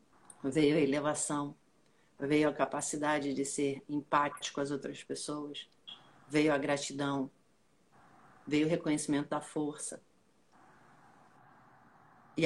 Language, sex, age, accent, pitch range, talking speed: Portuguese, female, 50-69, Brazilian, 150-215 Hz, 105 wpm